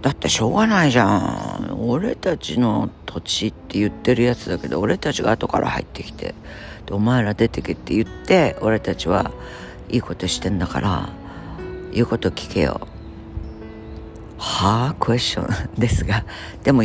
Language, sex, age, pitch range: Japanese, female, 50-69, 90-130 Hz